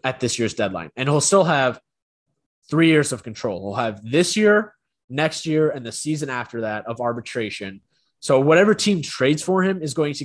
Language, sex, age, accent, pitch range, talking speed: English, male, 20-39, American, 120-155 Hz, 200 wpm